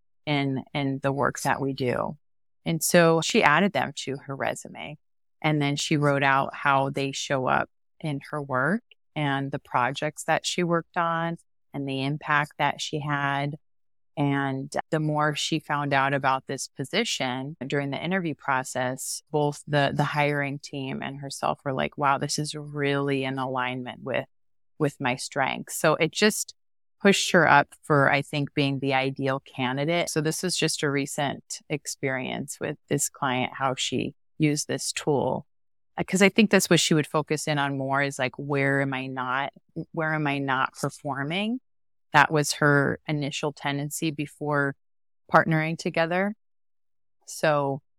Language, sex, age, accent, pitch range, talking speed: English, female, 30-49, American, 135-155 Hz, 165 wpm